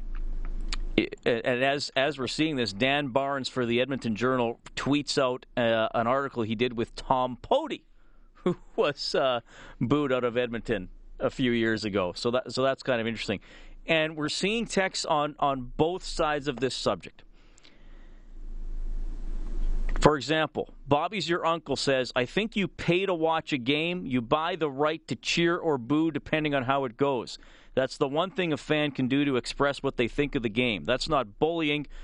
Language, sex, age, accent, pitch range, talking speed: English, male, 40-59, American, 125-155 Hz, 180 wpm